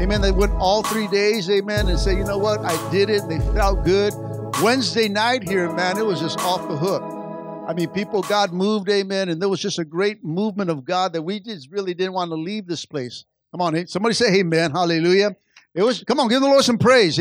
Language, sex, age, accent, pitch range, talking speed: English, male, 50-69, American, 190-250 Hz, 240 wpm